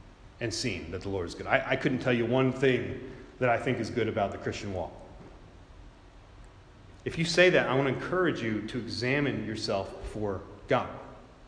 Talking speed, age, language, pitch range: 195 wpm, 30-49, English, 115-160 Hz